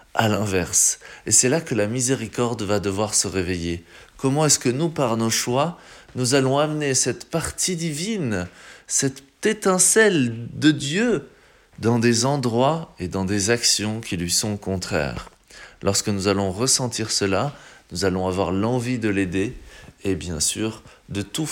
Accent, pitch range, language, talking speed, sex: French, 100-135 Hz, French, 155 wpm, male